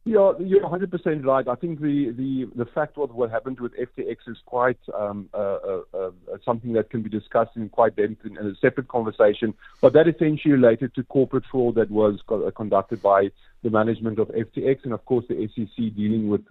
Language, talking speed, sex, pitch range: English, 200 wpm, male, 115-145 Hz